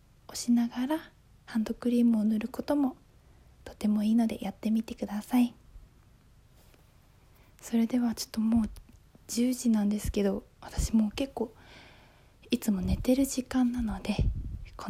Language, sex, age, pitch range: Japanese, female, 20-39, 215-265 Hz